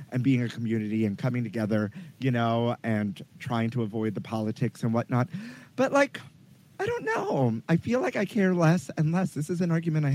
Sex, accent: male, American